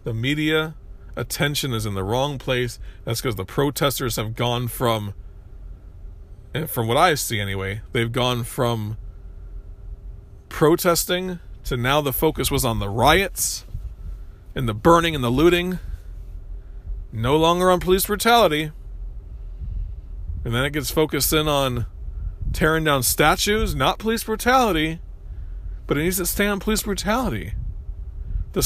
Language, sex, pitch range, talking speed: English, male, 95-140 Hz, 135 wpm